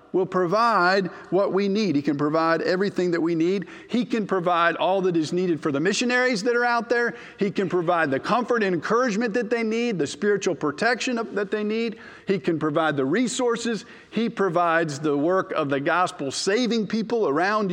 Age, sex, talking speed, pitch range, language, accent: 50-69, male, 195 wpm, 155-210 Hz, English, American